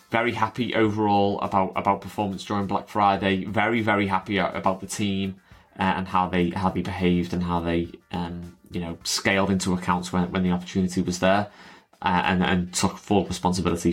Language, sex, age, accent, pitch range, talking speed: English, male, 20-39, British, 90-105 Hz, 185 wpm